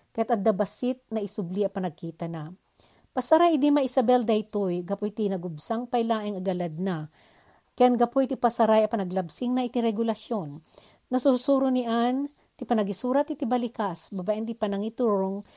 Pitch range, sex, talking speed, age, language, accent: 195-250 Hz, female, 130 wpm, 50-69, Filipino, native